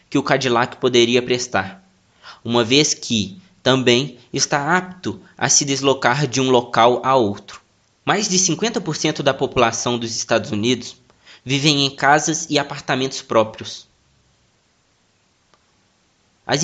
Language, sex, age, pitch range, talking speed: Portuguese, male, 20-39, 115-150 Hz, 125 wpm